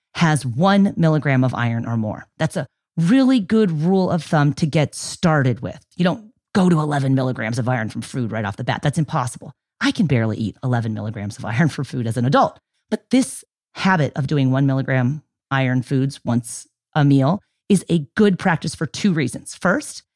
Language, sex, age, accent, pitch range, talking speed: English, female, 30-49, American, 135-205 Hz, 200 wpm